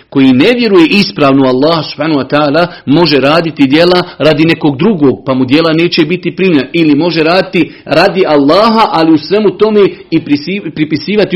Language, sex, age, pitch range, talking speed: Croatian, male, 50-69, 135-175 Hz, 165 wpm